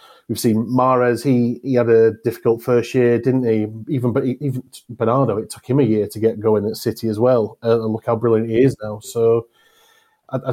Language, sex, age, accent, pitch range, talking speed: English, male, 30-49, British, 105-120 Hz, 215 wpm